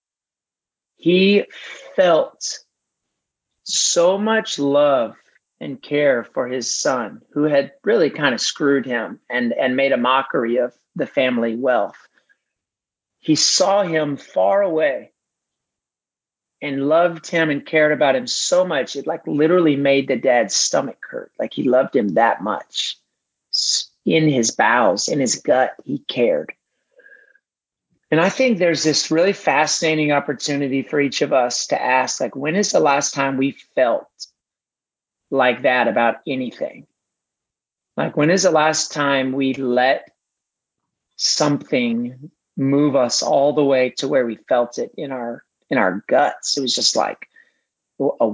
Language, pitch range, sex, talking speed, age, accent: English, 135-170 Hz, male, 145 wpm, 40-59, American